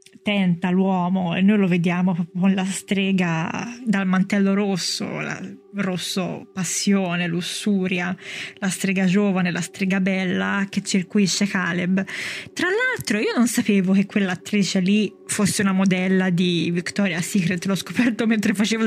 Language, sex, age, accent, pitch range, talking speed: Italian, female, 20-39, native, 190-215 Hz, 140 wpm